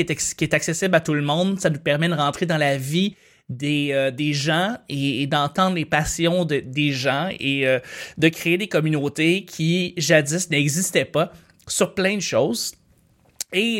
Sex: male